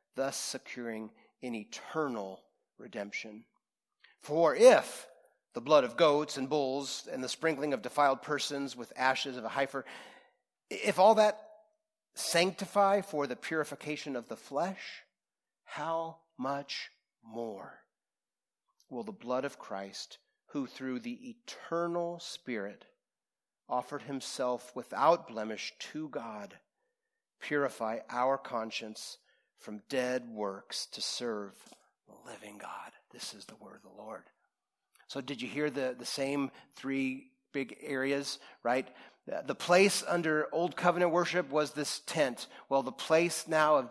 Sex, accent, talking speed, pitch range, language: male, American, 130 wpm, 125-170 Hz, English